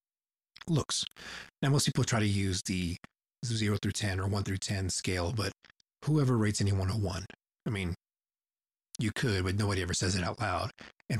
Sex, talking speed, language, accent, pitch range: male, 180 wpm, English, American, 95-110 Hz